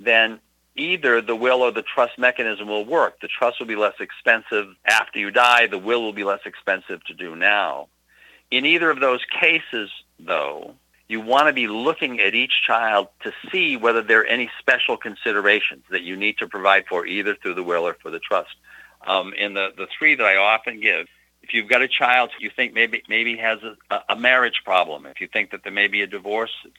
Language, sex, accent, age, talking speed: English, male, American, 50-69, 215 wpm